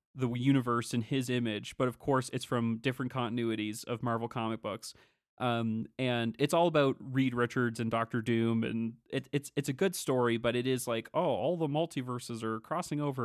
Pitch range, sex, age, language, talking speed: 120-145 Hz, male, 30-49, English, 200 wpm